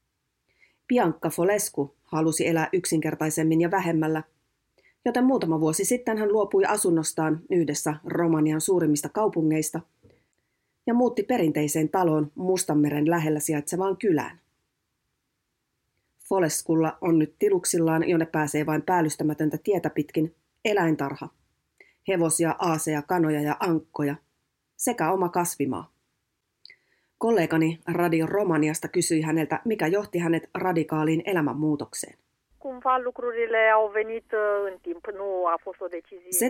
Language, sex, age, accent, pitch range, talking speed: Finnish, female, 30-49, native, 155-190 Hz, 90 wpm